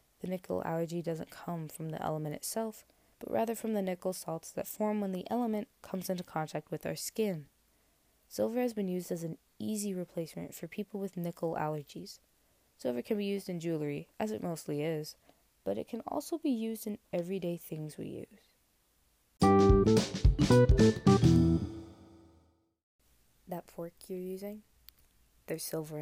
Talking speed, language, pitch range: 150 wpm, English, 150-195 Hz